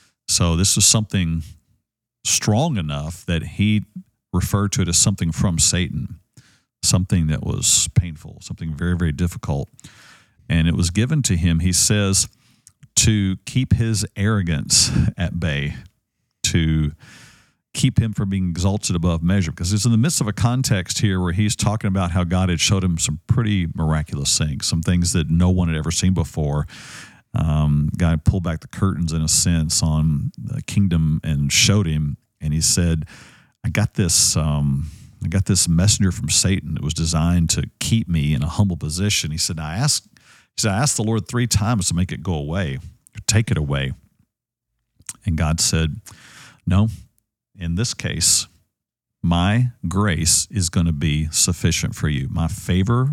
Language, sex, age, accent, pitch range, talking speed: English, male, 50-69, American, 80-105 Hz, 170 wpm